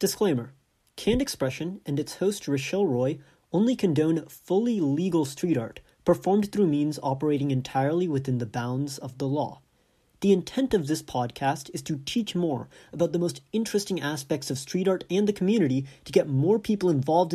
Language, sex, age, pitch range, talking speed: English, male, 30-49, 130-175 Hz, 175 wpm